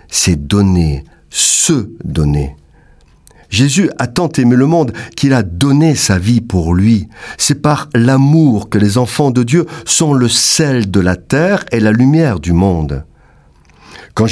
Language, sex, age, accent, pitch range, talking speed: French, male, 50-69, French, 90-130 Hz, 155 wpm